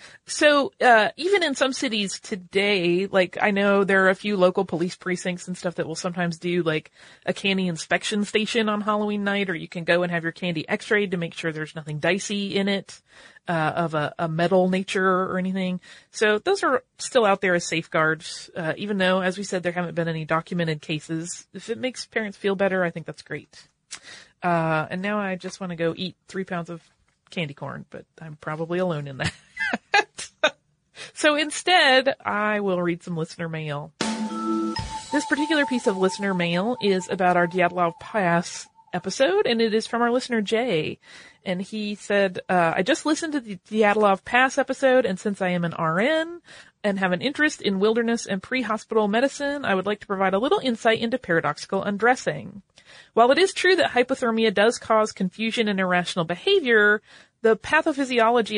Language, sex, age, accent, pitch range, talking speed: English, female, 30-49, American, 175-230 Hz, 190 wpm